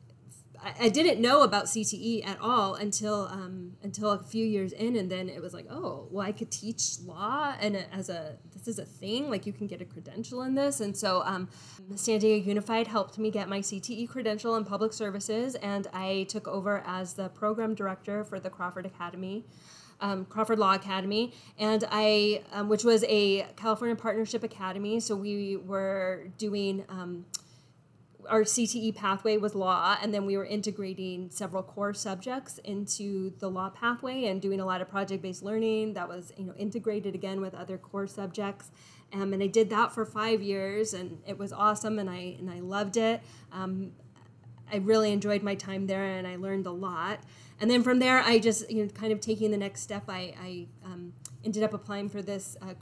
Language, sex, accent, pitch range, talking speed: English, female, American, 190-220 Hz, 195 wpm